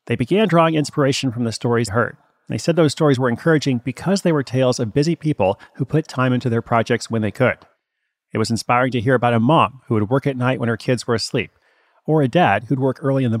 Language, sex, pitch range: English, male, 120-150 Hz